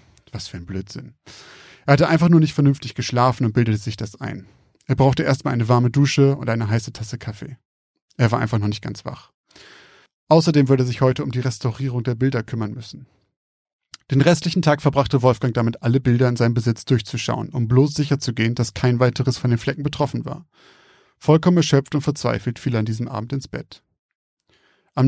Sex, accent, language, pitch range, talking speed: male, German, German, 120-140 Hz, 195 wpm